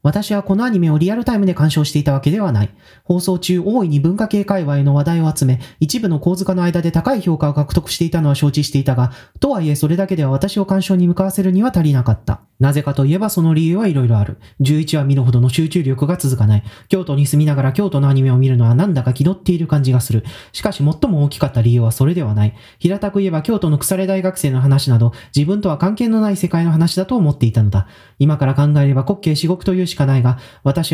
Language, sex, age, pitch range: Japanese, male, 30-49, 140-190 Hz